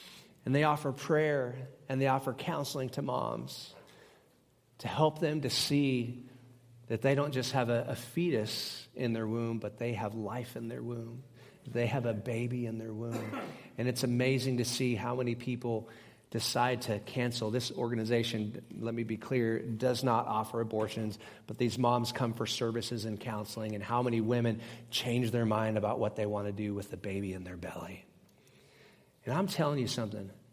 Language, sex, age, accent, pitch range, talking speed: English, male, 40-59, American, 115-135 Hz, 185 wpm